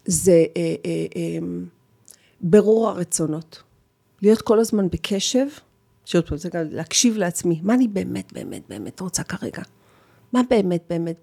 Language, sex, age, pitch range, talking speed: Hebrew, female, 40-59, 155-195 Hz, 140 wpm